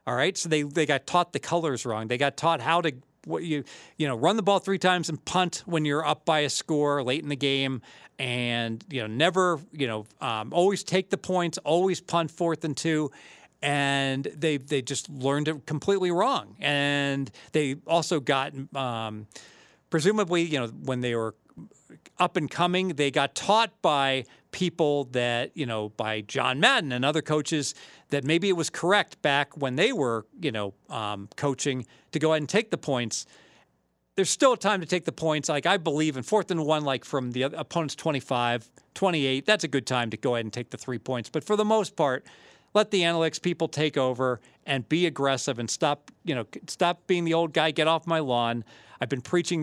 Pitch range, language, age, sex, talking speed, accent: 135-170 Hz, English, 40-59, male, 205 wpm, American